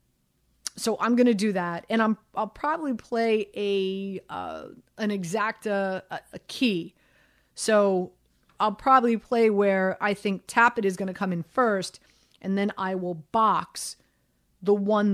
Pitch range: 190-235 Hz